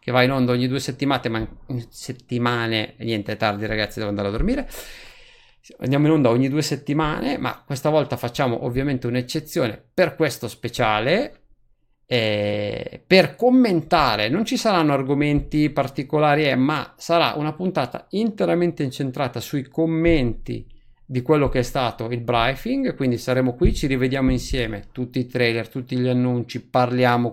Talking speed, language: 155 wpm, Italian